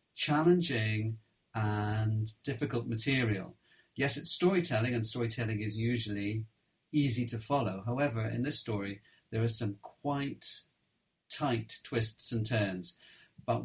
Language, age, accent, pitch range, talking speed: English, 40-59, British, 110-140 Hz, 120 wpm